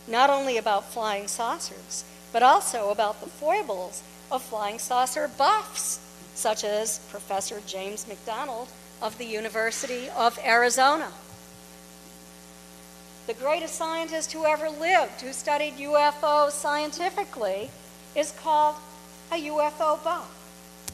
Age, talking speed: 50-69, 110 wpm